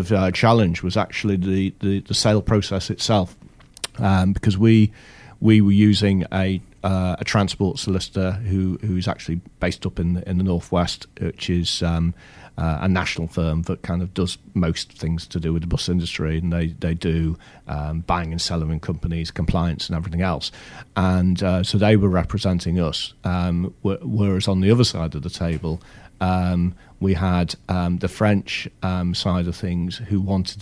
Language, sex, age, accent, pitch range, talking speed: English, male, 40-59, British, 85-100 Hz, 180 wpm